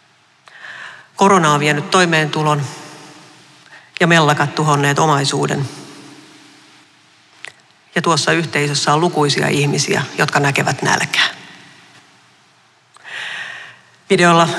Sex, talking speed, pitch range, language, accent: female, 75 wpm, 150-185 Hz, Finnish, native